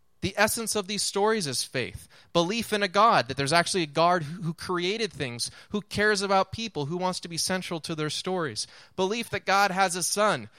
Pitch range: 140-195 Hz